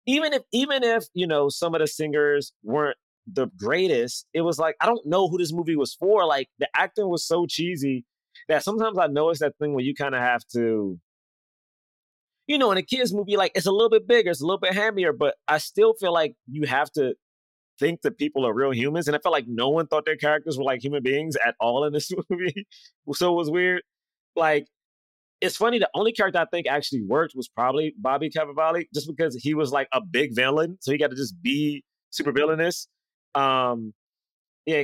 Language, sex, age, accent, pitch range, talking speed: English, male, 30-49, American, 140-185 Hz, 220 wpm